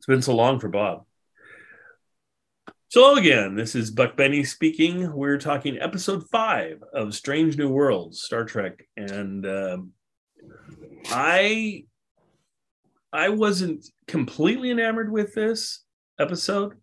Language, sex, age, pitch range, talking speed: English, male, 30-49, 105-155 Hz, 120 wpm